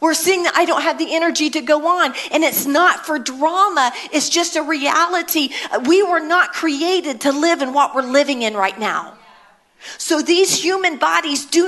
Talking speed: 195 wpm